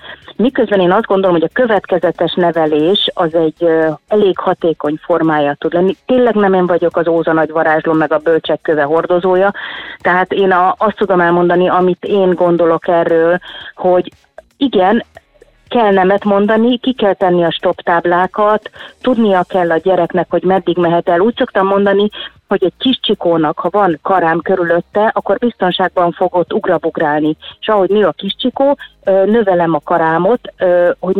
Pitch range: 165-200 Hz